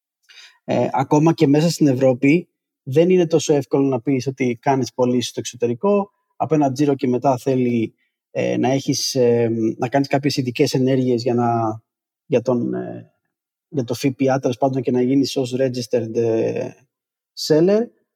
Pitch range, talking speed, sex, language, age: 130-170 Hz, 150 wpm, male, Greek, 20-39